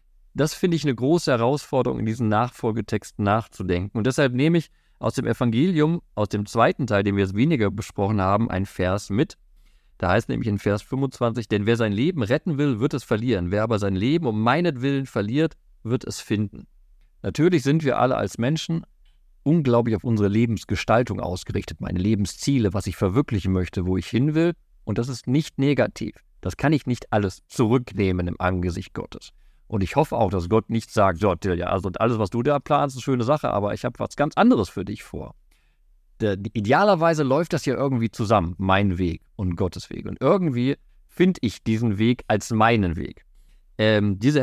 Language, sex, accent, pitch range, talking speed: German, male, German, 100-135 Hz, 190 wpm